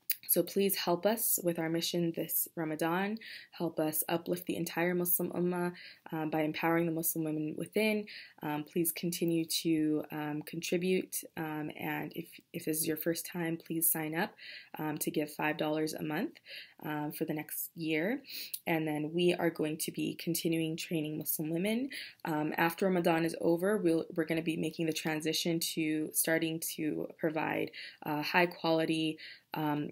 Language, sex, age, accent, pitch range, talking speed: English, female, 20-39, American, 155-175 Hz, 165 wpm